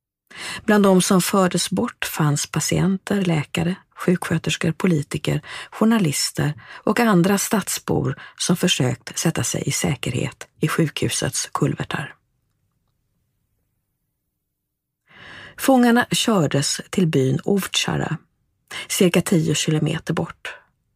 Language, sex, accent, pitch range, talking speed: English, female, Swedish, 140-180 Hz, 90 wpm